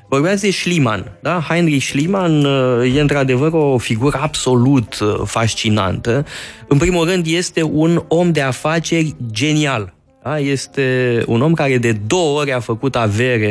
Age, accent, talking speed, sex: 20-39, native, 140 wpm, male